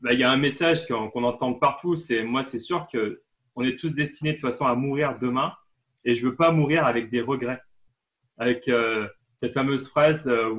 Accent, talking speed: French, 215 wpm